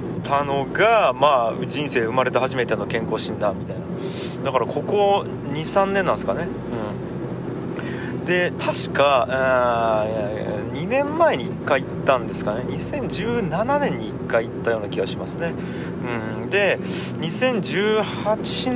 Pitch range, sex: 125-190 Hz, male